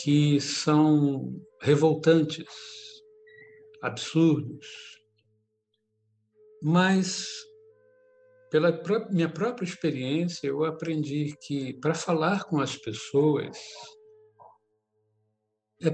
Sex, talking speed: male, 70 wpm